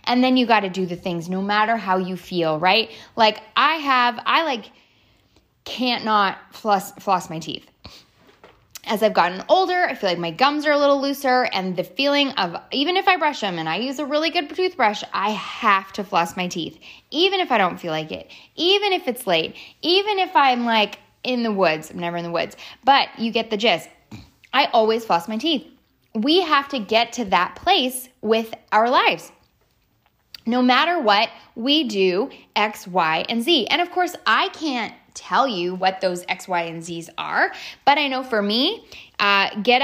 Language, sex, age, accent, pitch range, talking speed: English, female, 10-29, American, 200-270 Hz, 200 wpm